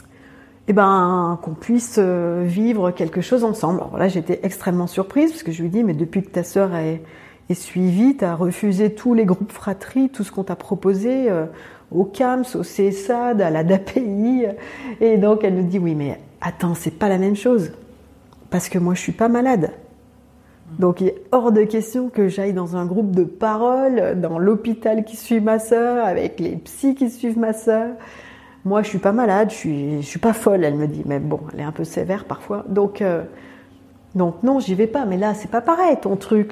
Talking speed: 210 wpm